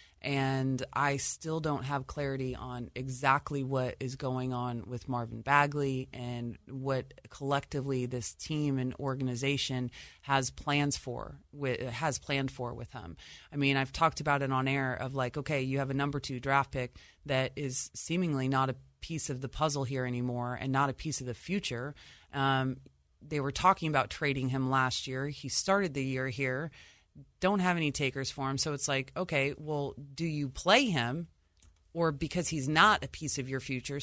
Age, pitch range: 30-49, 130-155 Hz